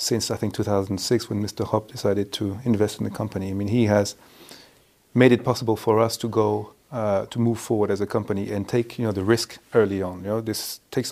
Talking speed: 230 wpm